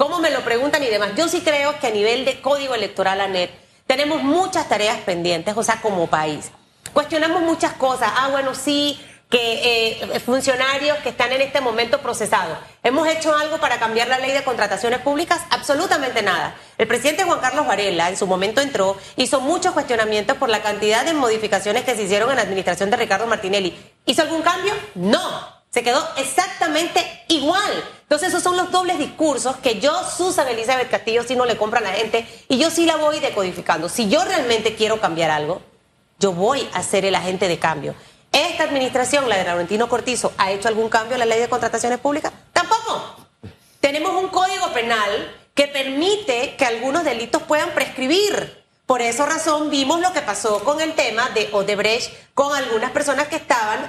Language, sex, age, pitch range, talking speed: Spanish, female, 30-49, 220-305 Hz, 185 wpm